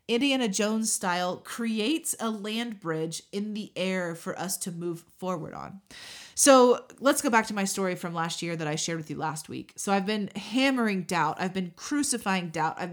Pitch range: 180-245 Hz